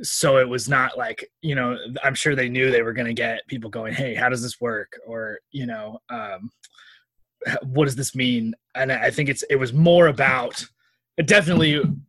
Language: English